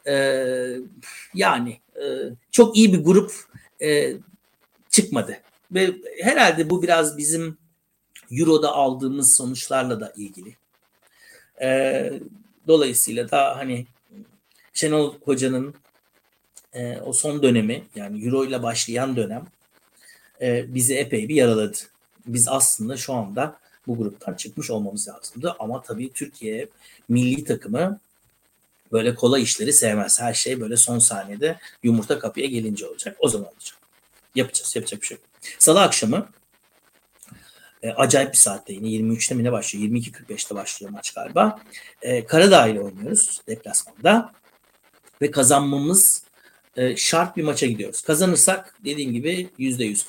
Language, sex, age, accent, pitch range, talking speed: Turkish, male, 60-79, native, 120-180 Hz, 115 wpm